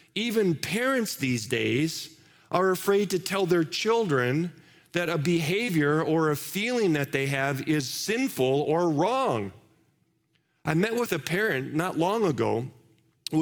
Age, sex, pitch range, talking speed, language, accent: 40-59, male, 140-195 Hz, 145 wpm, English, American